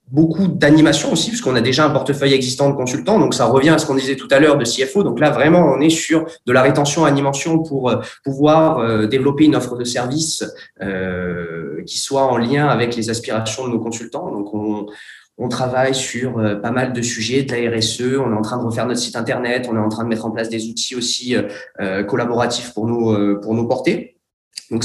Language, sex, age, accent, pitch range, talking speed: French, male, 20-39, French, 115-150 Hz, 225 wpm